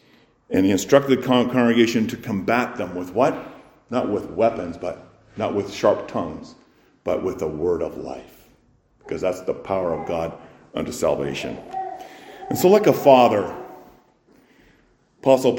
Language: English